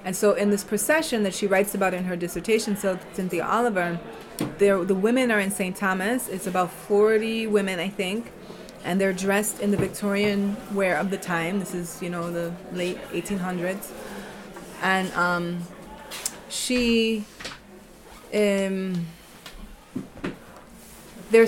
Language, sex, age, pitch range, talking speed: English, female, 20-39, 180-215 Hz, 135 wpm